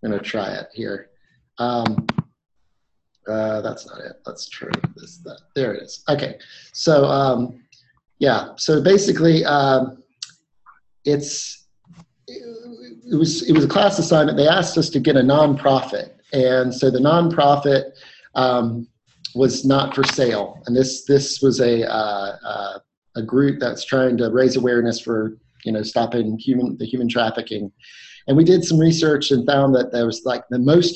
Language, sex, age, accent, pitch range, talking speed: English, male, 30-49, American, 120-155 Hz, 160 wpm